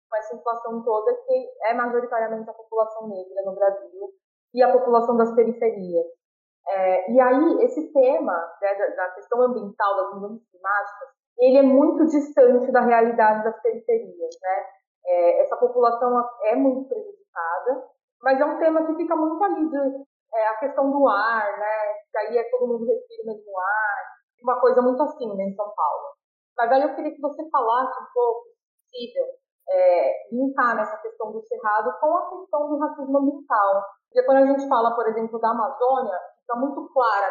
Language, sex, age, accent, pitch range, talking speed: Portuguese, female, 20-39, Brazilian, 215-280 Hz, 180 wpm